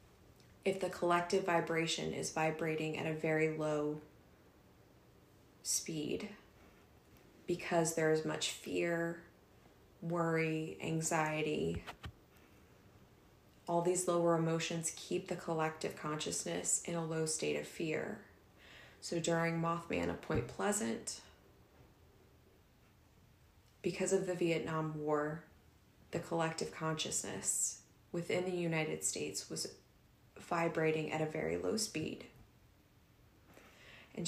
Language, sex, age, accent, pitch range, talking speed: English, female, 20-39, American, 155-180 Hz, 100 wpm